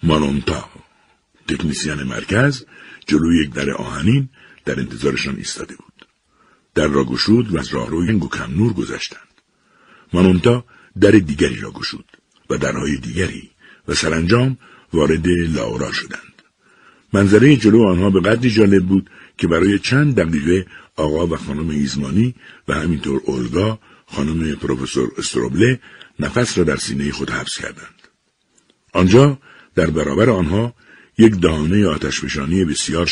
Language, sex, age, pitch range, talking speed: Persian, male, 60-79, 75-110 Hz, 125 wpm